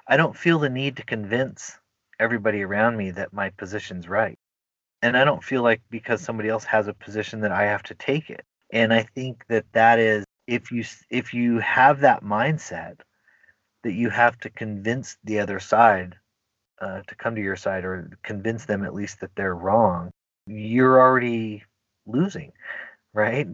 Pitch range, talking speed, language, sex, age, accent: 100-120 Hz, 180 wpm, English, male, 30-49, American